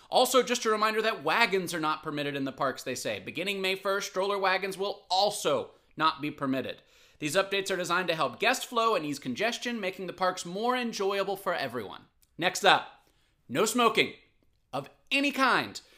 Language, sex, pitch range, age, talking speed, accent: English, male, 150-225 Hz, 30-49, 185 wpm, American